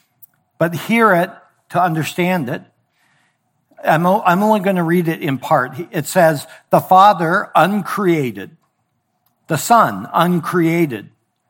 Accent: American